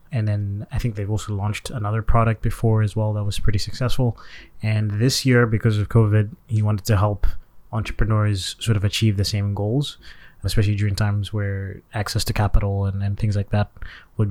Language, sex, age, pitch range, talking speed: English, male, 20-39, 100-115 Hz, 195 wpm